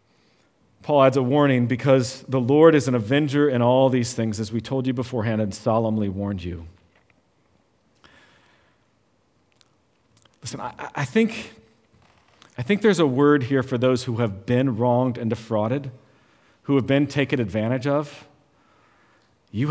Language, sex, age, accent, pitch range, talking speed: English, male, 40-59, American, 110-150 Hz, 145 wpm